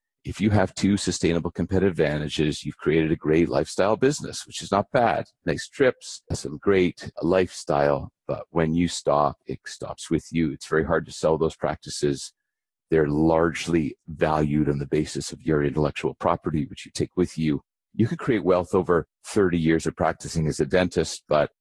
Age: 40-59